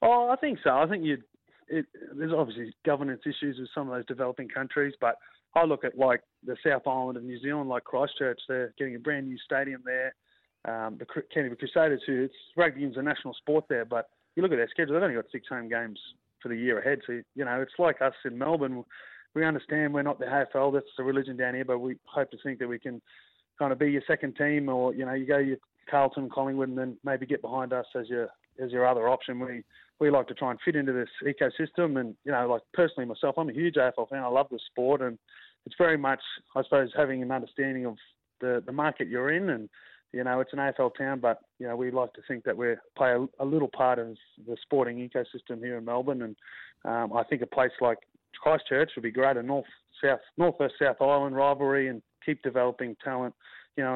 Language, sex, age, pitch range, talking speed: English, male, 30-49, 125-140 Hz, 230 wpm